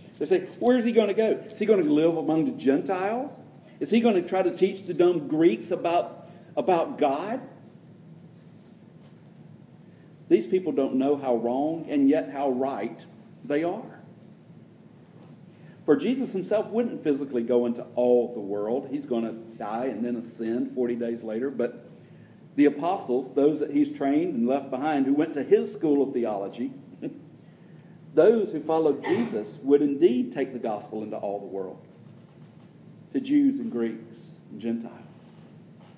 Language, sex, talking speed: English, male, 160 wpm